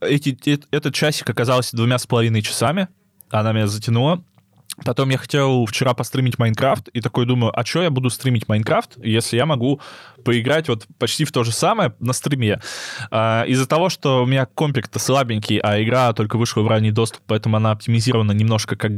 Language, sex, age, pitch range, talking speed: Russian, male, 20-39, 110-135 Hz, 180 wpm